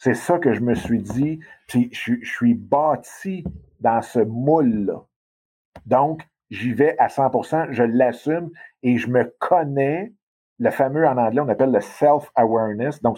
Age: 50-69